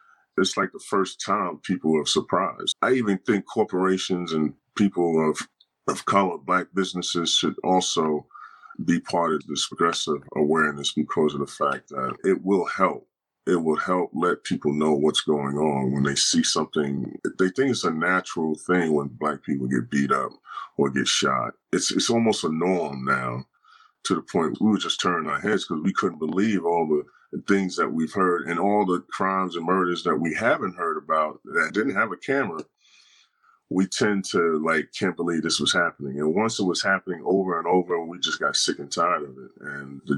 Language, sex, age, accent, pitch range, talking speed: English, male, 40-59, American, 75-95 Hz, 195 wpm